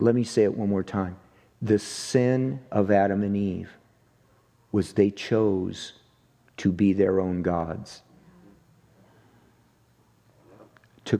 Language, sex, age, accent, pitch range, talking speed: English, male, 50-69, American, 100-130 Hz, 120 wpm